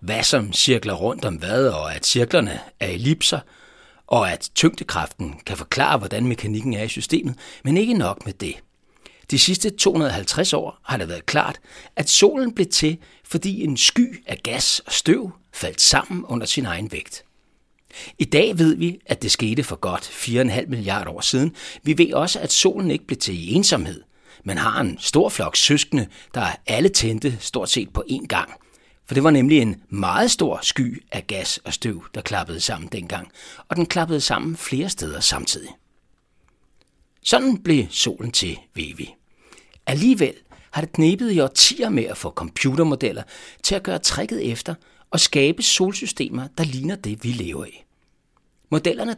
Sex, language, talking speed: male, Danish, 170 wpm